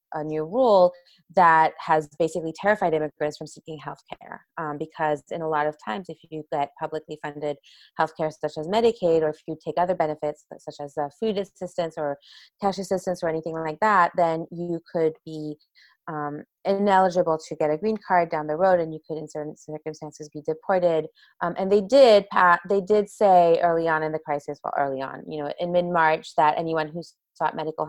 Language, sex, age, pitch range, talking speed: English, female, 20-39, 150-175 Hz, 200 wpm